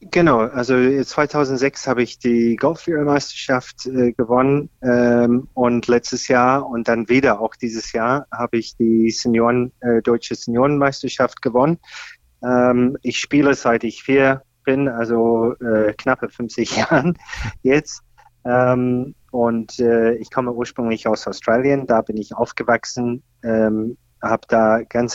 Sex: male